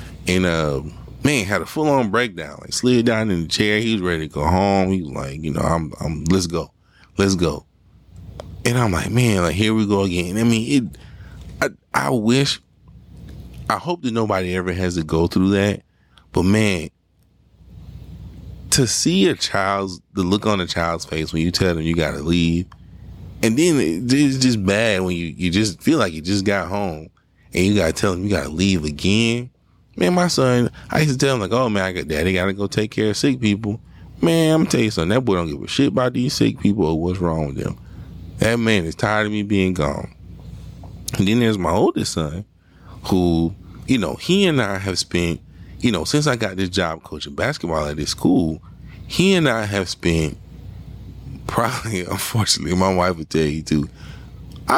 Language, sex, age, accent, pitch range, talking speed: English, male, 30-49, American, 85-110 Hz, 210 wpm